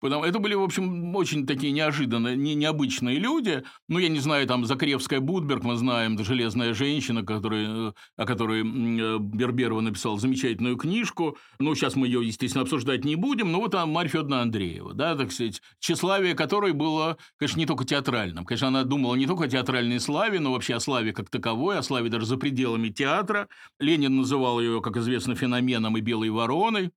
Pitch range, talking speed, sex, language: 125-165 Hz, 180 wpm, male, Russian